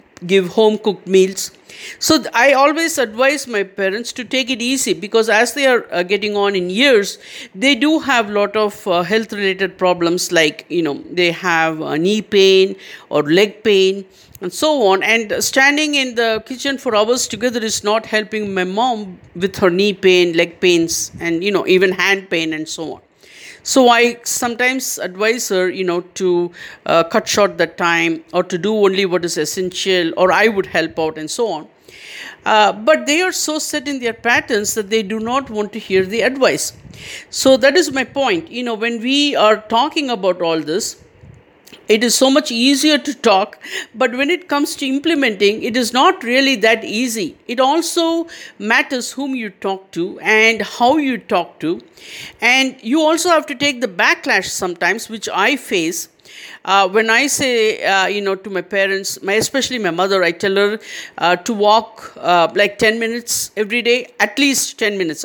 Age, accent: 50-69, Indian